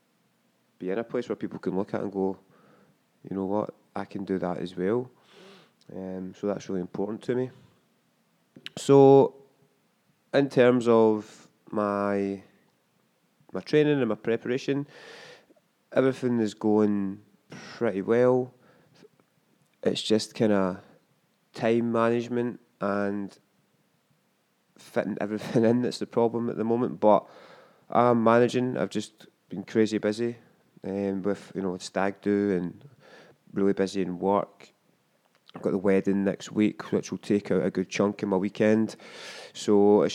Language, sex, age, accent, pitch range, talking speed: English, male, 20-39, British, 95-115 Hz, 145 wpm